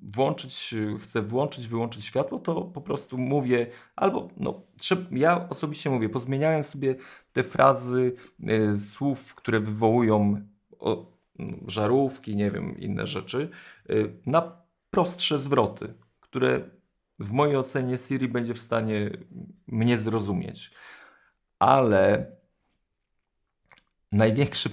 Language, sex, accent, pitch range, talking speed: Polish, male, native, 105-135 Hz, 105 wpm